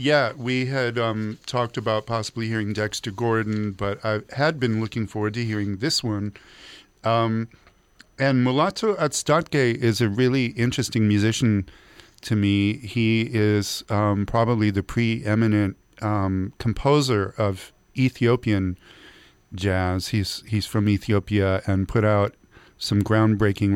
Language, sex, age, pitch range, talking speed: English, male, 40-59, 100-115 Hz, 130 wpm